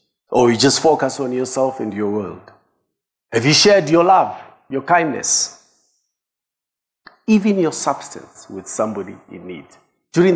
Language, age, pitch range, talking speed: English, 50-69, 130-175 Hz, 140 wpm